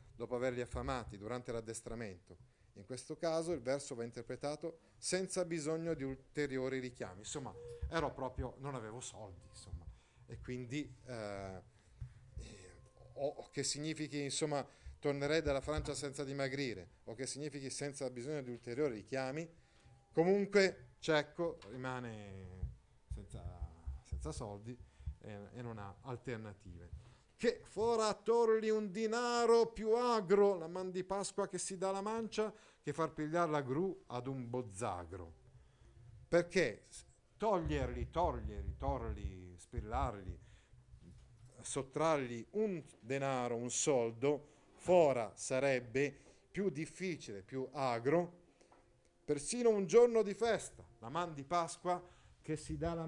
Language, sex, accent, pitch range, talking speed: Italian, male, native, 115-165 Hz, 125 wpm